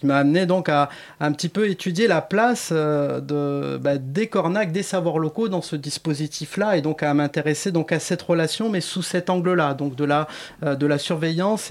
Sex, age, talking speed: male, 30-49, 205 wpm